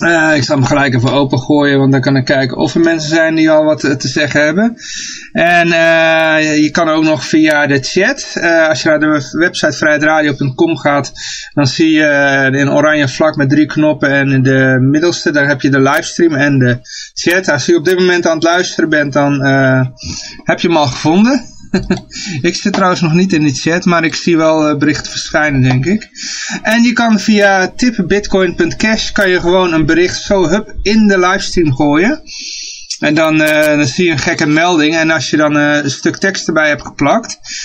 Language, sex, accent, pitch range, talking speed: Dutch, male, Dutch, 145-175 Hz, 205 wpm